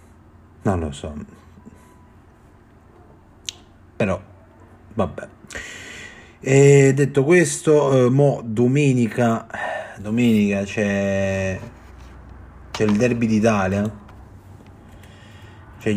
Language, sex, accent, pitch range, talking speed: Italian, male, native, 95-115 Hz, 65 wpm